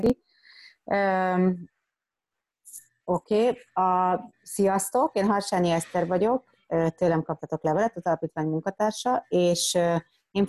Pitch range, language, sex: 155-185 Hz, Hungarian, female